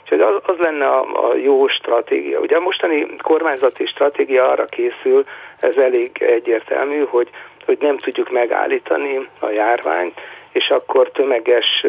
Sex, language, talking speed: male, Hungarian, 135 wpm